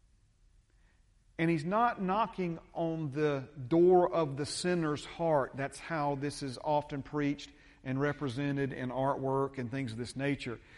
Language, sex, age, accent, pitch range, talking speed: English, male, 40-59, American, 140-225 Hz, 145 wpm